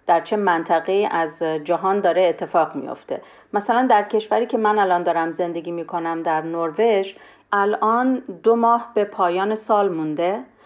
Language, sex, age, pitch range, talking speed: Persian, female, 40-59, 190-235 Hz, 150 wpm